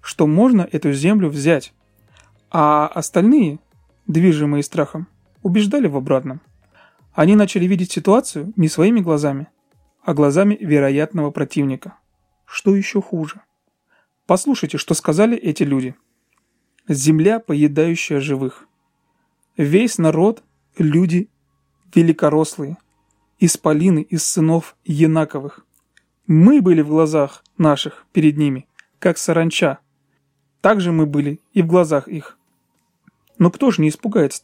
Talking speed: 115 wpm